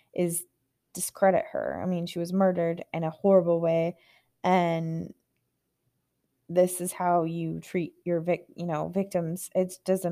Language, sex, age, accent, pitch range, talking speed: English, female, 20-39, American, 170-195 Hz, 150 wpm